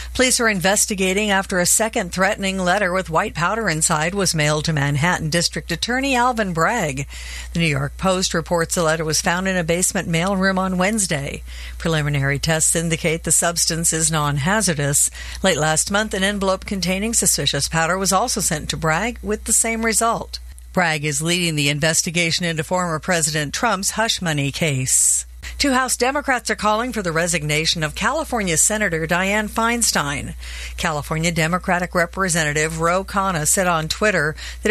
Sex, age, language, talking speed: female, 50-69, English, 160 wpm